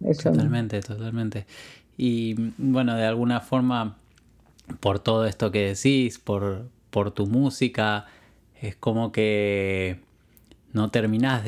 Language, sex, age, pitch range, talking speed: Spanish, male, 20-39, 100-115 Hz, 110 wpm